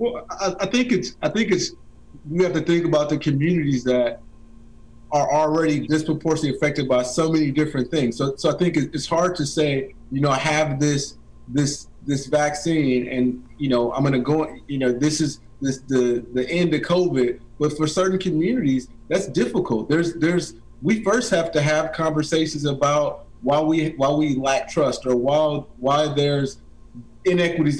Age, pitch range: 30-49, 135-160 Hz